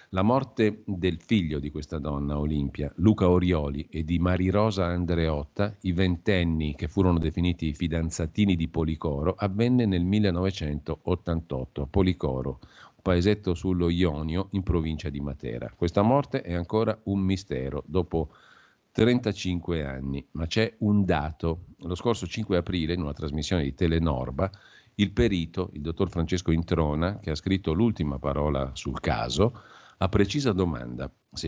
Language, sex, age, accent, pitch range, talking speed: Italian, male, 50-69, native, 75-95 Hz, 145 wpm